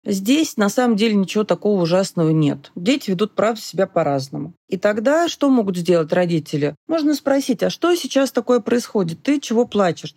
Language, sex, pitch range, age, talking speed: Russian, female, 175-235 Hz, 30-49, 170 wpm